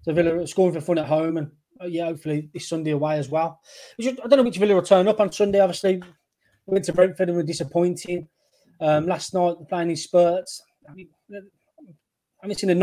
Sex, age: male, 20-39